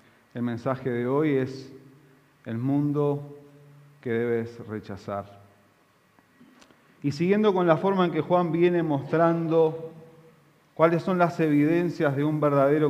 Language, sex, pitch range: Spanish, male, 125-160 Hz